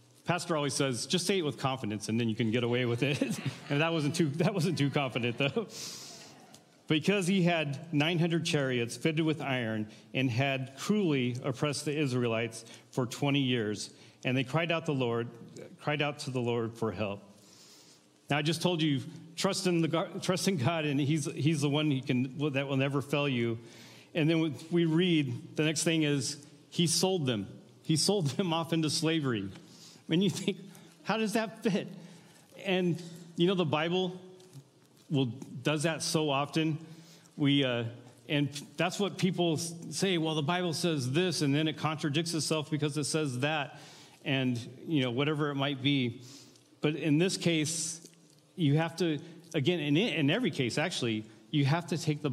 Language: English